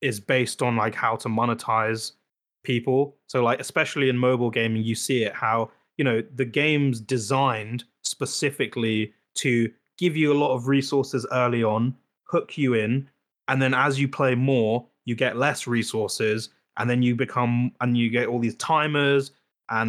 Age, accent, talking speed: 20-39, British, 170 wpm